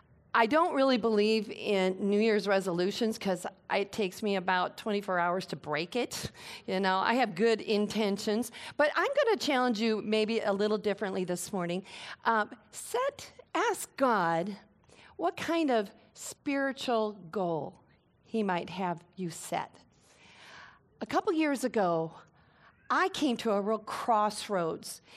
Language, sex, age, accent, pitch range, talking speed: English, female, 40-59, American, 190-245 Hz, 145 wpm